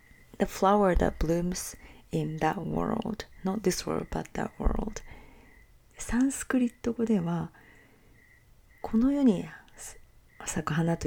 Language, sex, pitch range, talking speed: English, female, 165-220 Hz, 65 wpm